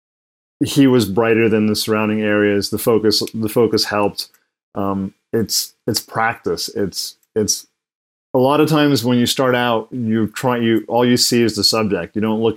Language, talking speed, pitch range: English, 180 wpm, 100-110 Hz